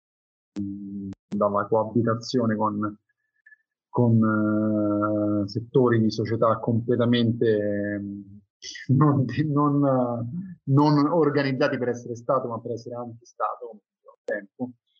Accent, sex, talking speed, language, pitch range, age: native, male, 90 wpm, Italian, 110-130 Hz, 30-49